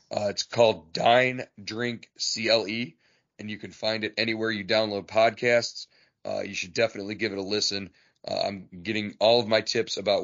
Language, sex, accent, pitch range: English, male, American, 95-110 Hz